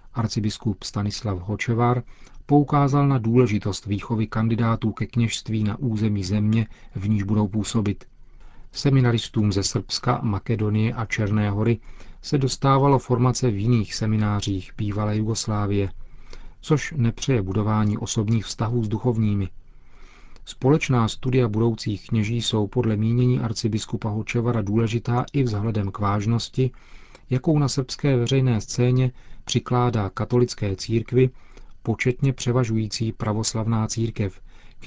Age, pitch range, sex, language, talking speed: 40-59, 105-125 Hz, male, Czech, 115 wpm